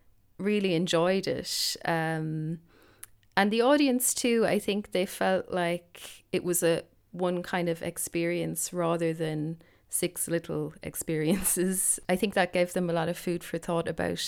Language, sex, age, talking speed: English, female, 30-49, 155 wpm